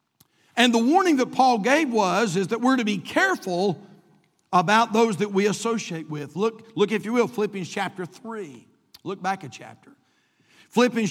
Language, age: English, 50-69